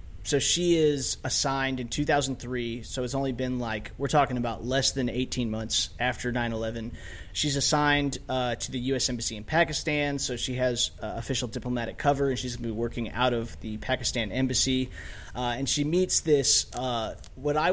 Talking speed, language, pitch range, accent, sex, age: 185 wpm, English, 120-140 Hz, American, male, 30-49